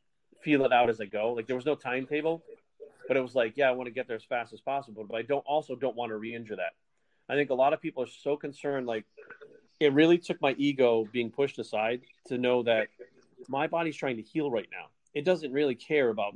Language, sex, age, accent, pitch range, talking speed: English, male, 30-49, American, 115-145 Hz, 245 wpm